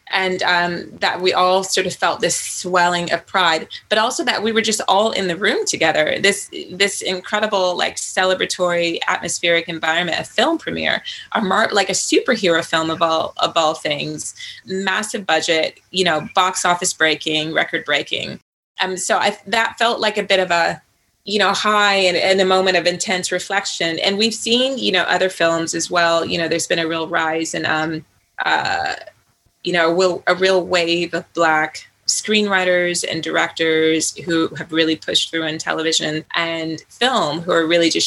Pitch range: 165-195 Hz